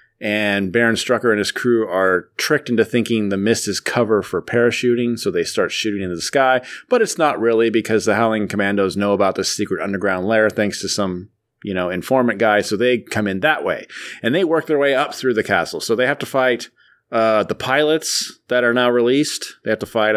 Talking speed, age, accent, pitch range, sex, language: 225 wpm, 30-49, American, 105-130 Hz, male, English